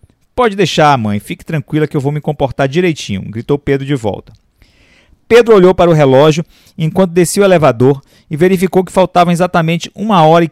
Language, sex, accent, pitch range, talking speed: Portuguese, male, Brazilian, 130-175 Hz, 185 wpm